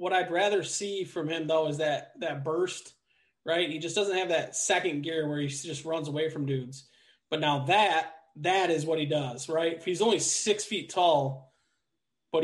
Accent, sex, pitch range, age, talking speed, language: American, male, 150-180 Hz, 20-39, 200 wpm, English